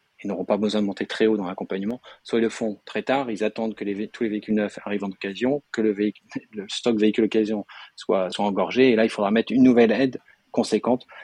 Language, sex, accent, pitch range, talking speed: French, male, French, 100-110 Hz, 245 wpm